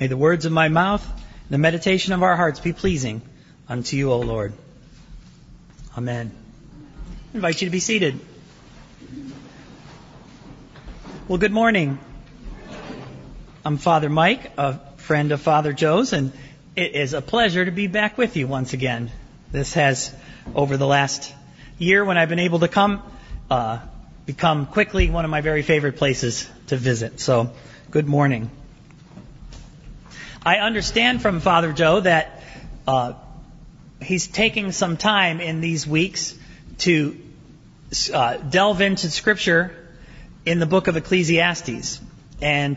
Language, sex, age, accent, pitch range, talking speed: English, male, 40-59, American, 140-185 Hz, 140 wpm